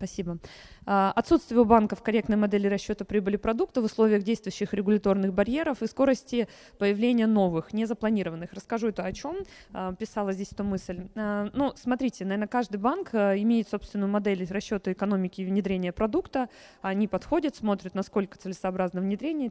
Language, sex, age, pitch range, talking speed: Russian, female, 20-39, 190-230 Hz, 140 wpm